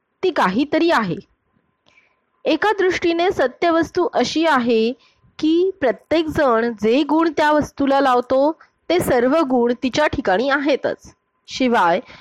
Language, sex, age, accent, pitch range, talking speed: Marathi, female, 30-49, native, 240-335 Hz, 115 wpm